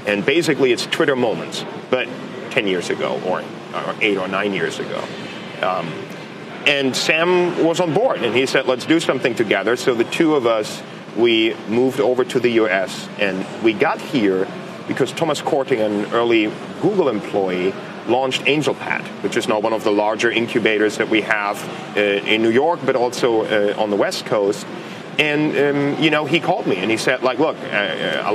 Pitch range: 110-140 Hz